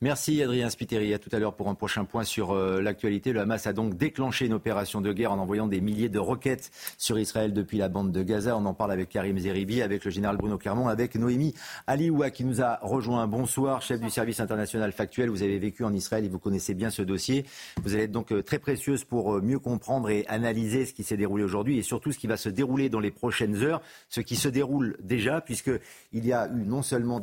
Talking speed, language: 240 wpm, French